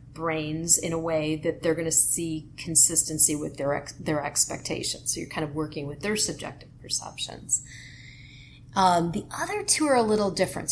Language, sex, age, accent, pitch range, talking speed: English, female, 30-49, American, 145-185 Hz, 175 wpm